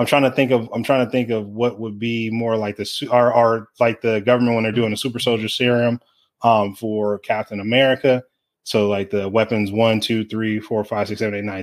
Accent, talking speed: American, 225 wpm